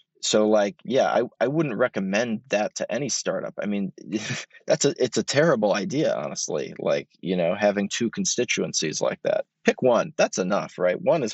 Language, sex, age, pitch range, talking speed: English, male, 20-39, 105-120 Hz, 185 wpm